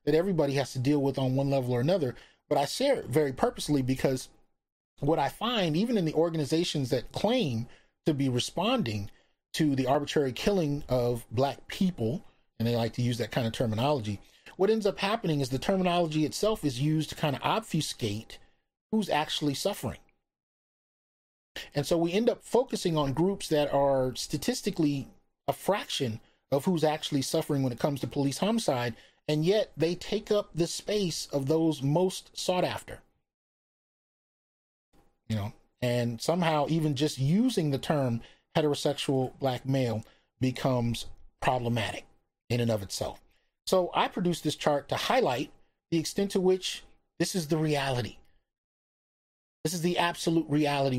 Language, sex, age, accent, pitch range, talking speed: English, male, 30-49, American, 130-170 Hz, 160 wpm